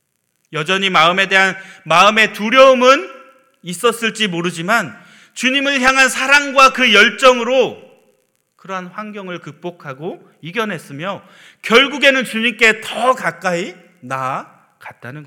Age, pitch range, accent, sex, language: 40-59, 145-215 Hz, native, male, Korean